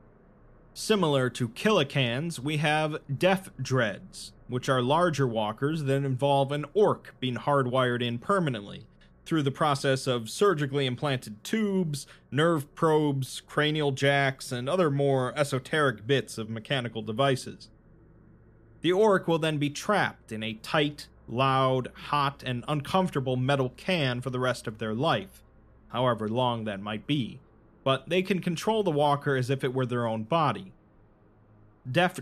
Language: English